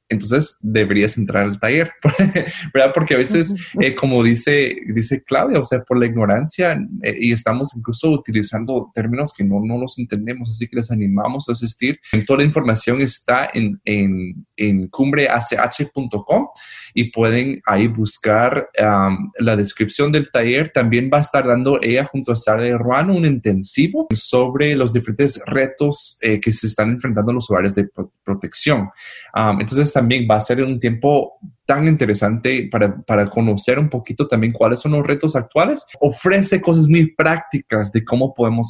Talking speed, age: 170 wpm, 20-39